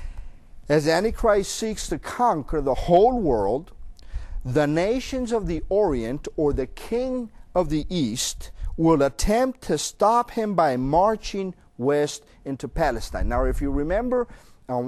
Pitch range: 130-195 Hz